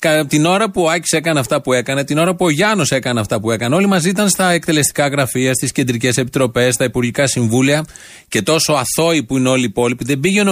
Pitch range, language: 125-160 Hz, Greek